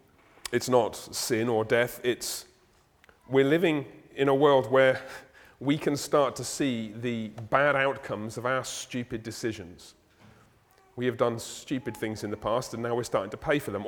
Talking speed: 175 wpm